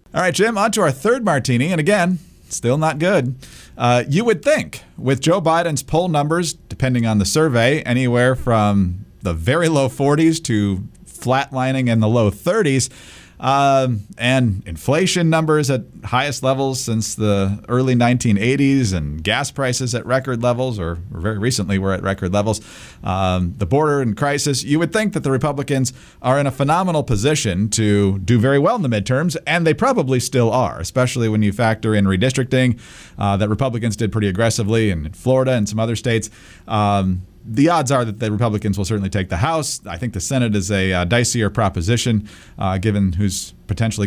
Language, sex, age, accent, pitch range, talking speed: English, male, 40-59, American, 105-140 Hz, 180 wpm